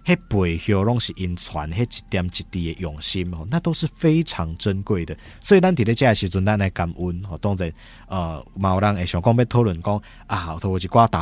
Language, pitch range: Chinese, 85-120 Hz